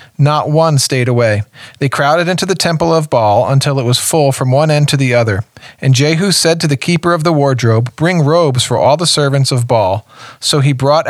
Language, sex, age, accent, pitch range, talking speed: English, male, 40-59, American, 125-155 Hz, 220 wpm